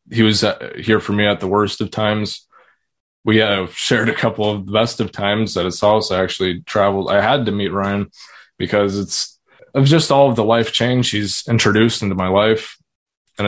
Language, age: English, 20-39